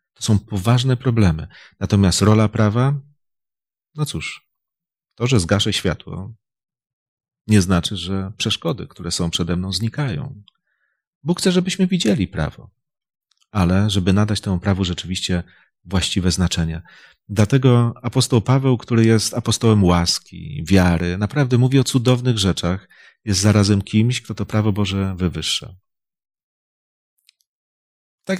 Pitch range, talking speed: 95-130 Hz, 120 wpm